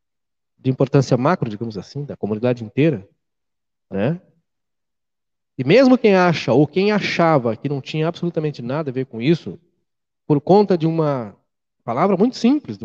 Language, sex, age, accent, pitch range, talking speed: Portuguese, male, 30-49, Brazilian, 125-175 Hz, 155 wpm